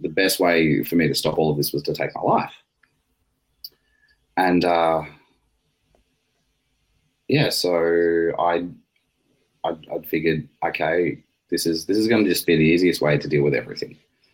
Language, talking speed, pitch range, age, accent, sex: English, 160 wpm, 80-90 Hz, 20-39, Australian, male